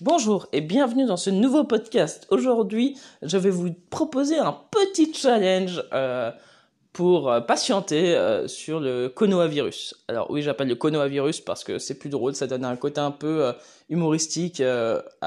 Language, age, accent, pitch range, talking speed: French, 20-39, French, 140-190 Hz, 160 wpm